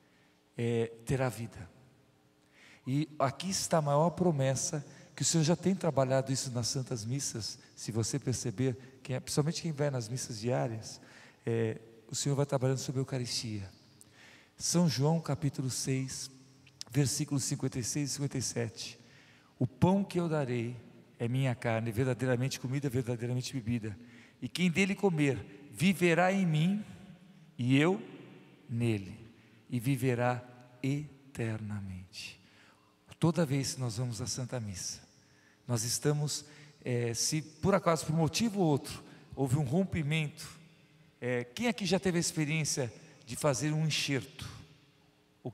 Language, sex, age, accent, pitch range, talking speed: Portuguese, male, 50-69, Brazilian, 125-160 Hz, 140 wpm